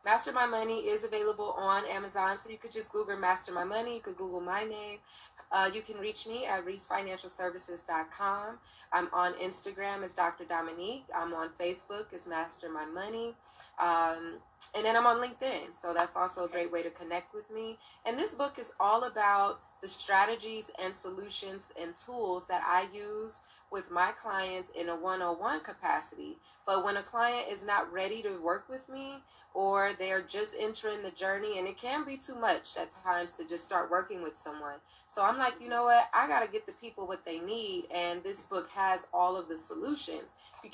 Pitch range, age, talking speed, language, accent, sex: 180-225 Hz, 20-39, 195 wpm, English, American, female